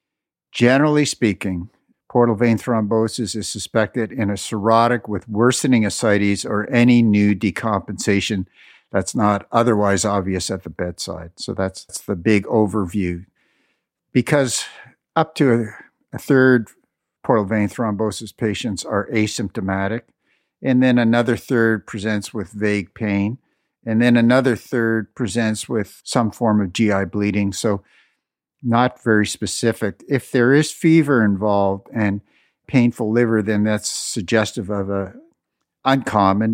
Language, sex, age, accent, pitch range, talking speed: English, male, 50-69, American, 100-120 Hz, 130 wpm